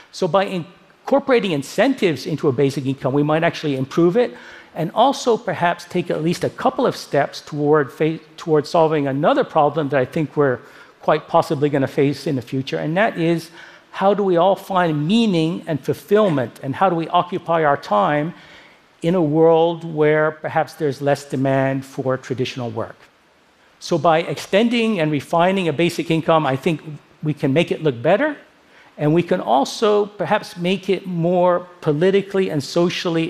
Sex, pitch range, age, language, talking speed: male, 145-180 Hz, 60-79, French, 175 wpm